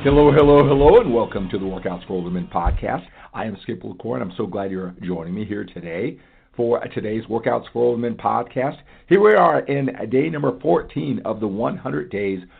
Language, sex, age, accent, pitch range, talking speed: English, male, 50-69, American, 95-135 Hz, 205 wpm